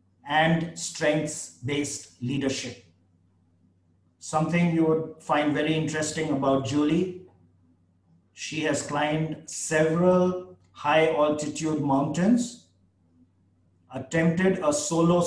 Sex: male